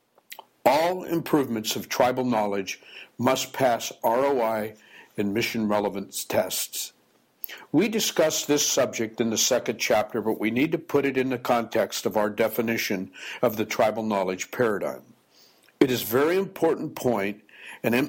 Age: 60-79